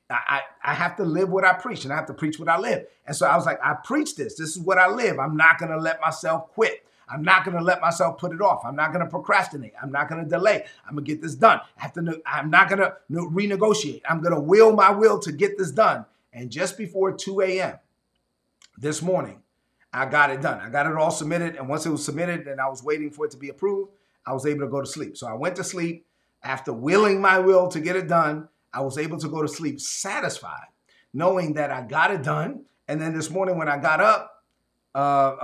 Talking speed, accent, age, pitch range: 250 wpm, American, 30-49, 140-180 Hz